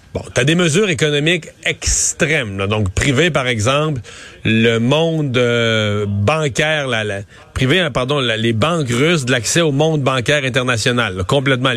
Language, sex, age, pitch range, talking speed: French, male, 40-59, 115-145 Hz, 170 wpm